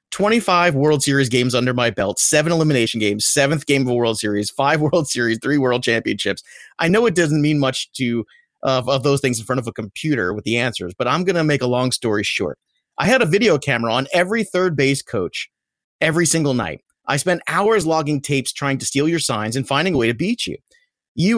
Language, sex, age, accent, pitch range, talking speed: English, male, 30-49, American, 125-165 Hz, 225 wpm